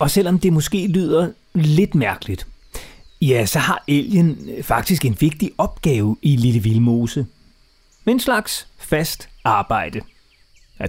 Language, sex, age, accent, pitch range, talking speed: Danish, male, 30-49, native, 120-175 Hz, 125 wpm